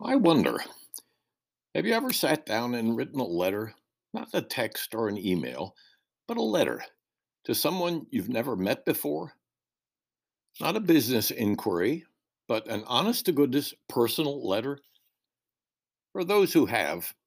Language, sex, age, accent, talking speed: English, male, 60-79, American, 135 wpm